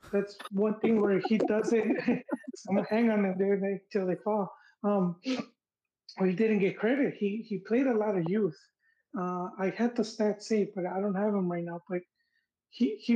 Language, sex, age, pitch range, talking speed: English, male, 20-39, 180-215 Hz, 195 wpm